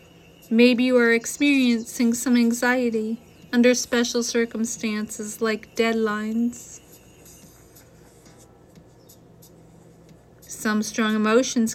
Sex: female